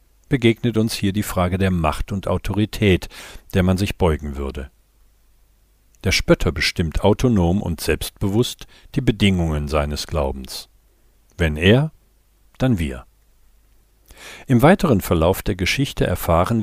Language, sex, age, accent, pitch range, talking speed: German, male, 50-69, German, 85-110 Hz, 125 wpm